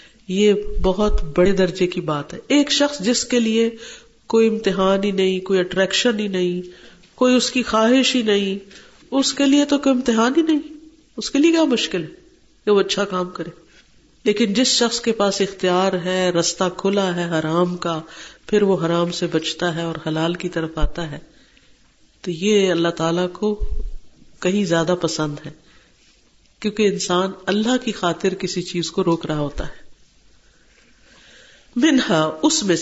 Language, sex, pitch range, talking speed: Urdu, female, 175-230 Hz, 170 wpm